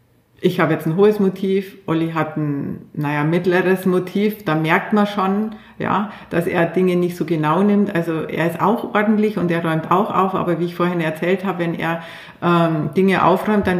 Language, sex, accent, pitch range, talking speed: German, female, Austrian, 165-190 Hz, 200 wpm